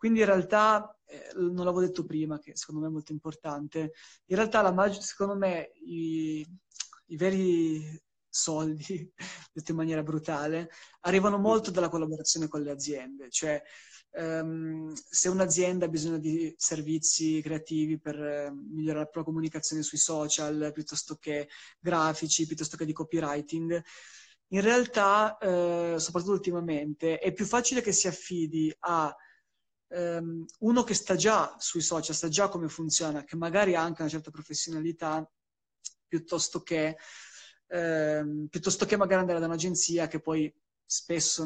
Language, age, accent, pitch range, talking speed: Italian, 20-39, native, 155-185 Hz, 140 wpm